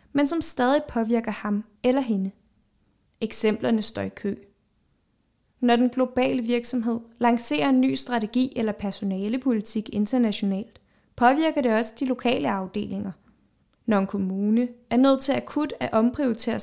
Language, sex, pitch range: Danish, female, 215-255 Hz